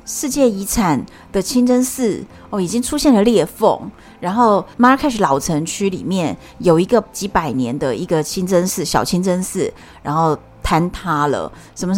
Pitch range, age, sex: 170-245 Hz, 30-49, female